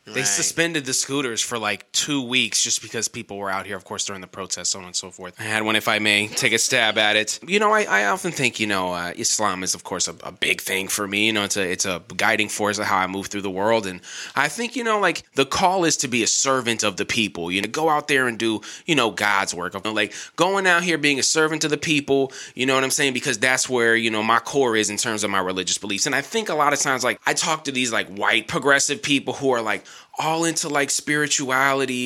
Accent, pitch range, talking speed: American, 110-145 Hz, 285 wpm